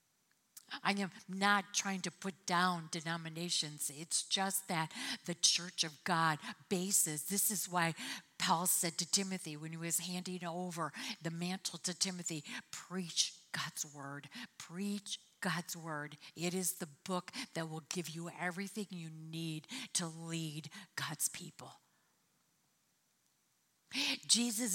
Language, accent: English, American